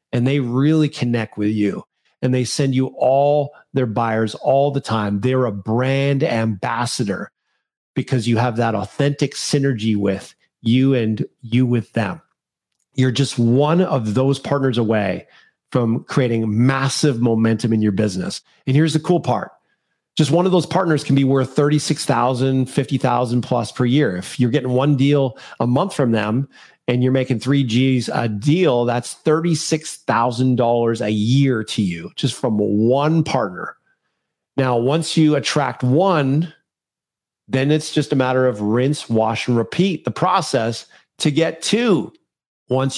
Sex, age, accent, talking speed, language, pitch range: male, 40-59, American, 155 wpm, English, 120-150 Hz